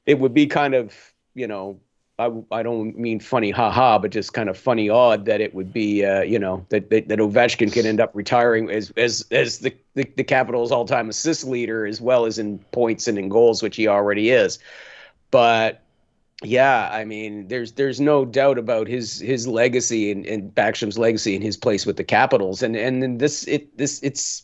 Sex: male